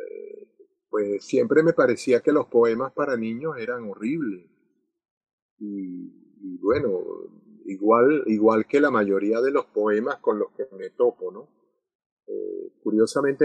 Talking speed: 135 wpm